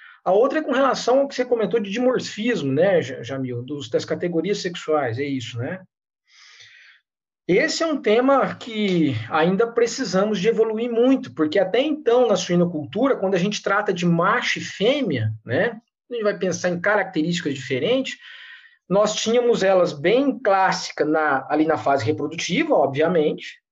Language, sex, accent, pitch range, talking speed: Portuguese, male, Brazilian, 160-265 Hz, 155 wpm